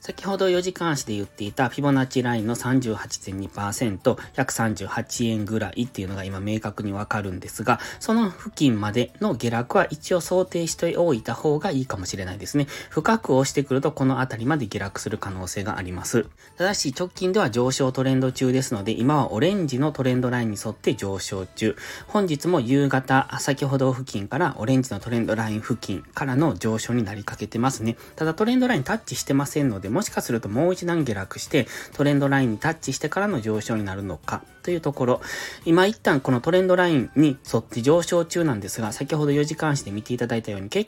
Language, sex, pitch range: Japanese, male, 110-155 Hz